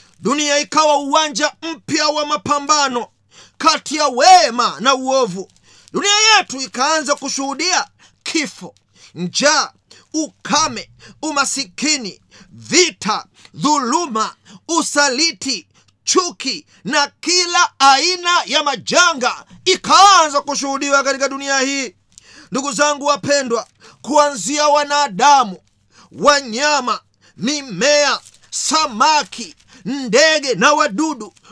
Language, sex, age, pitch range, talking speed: Swahili, male, 40-59, 270-320 Hz, 85 wpm